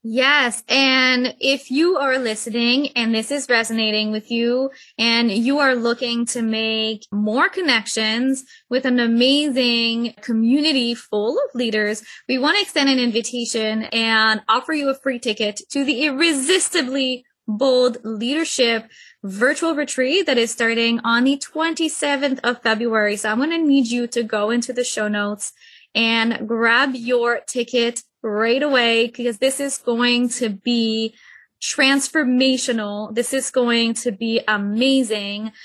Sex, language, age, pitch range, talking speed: female, English, 20-39, 230-270 Hz, 145 wpm